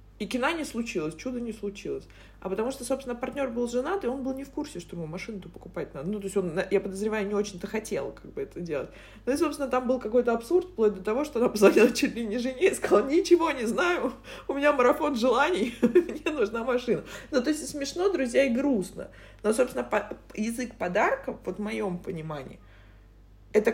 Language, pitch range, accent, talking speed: Russian, 180-250 Hz, native, 210 wpm